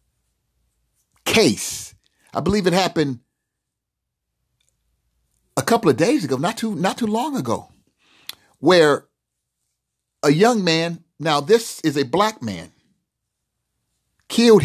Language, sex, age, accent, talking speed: English, male, 50-69, American, 110 wpm